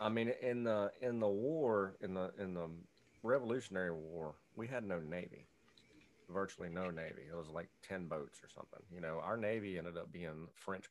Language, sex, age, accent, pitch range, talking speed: English, male, 40-59, American, 85-105 Hz, 195 wpm